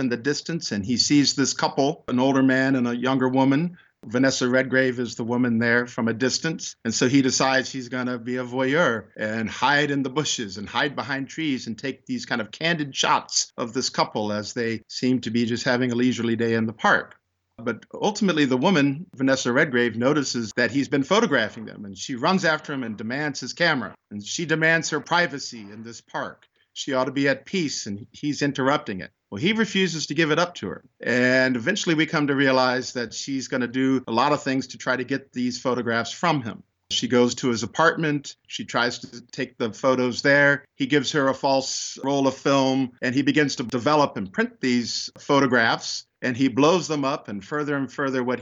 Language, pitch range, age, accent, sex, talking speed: English, 120-145 Hz, 50-69, American, male, 220 wpm